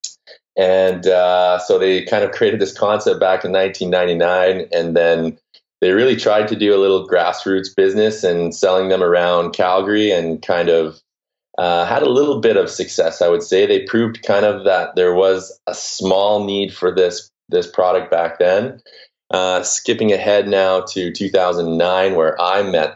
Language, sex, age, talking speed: English, male, 20-39, 175 wpm